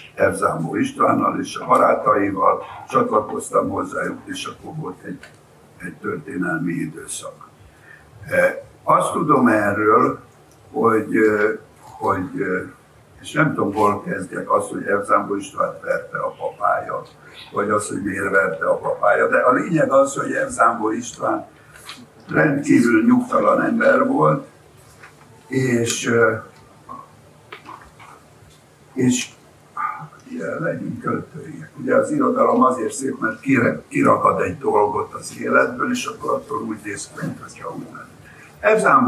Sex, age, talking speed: male, 60-79, 110 wpm